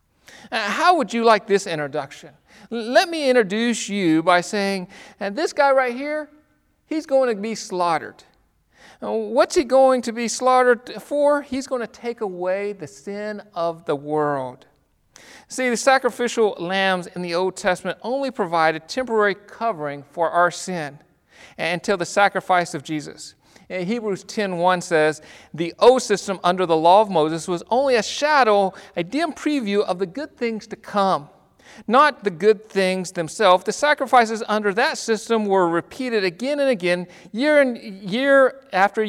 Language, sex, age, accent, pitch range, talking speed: English, male, 40-59, American, 180-245 Hz, 155 wpm